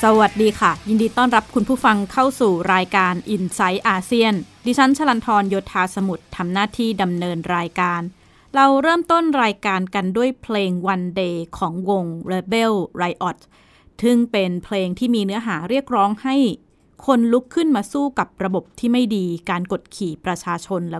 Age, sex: 20-39, female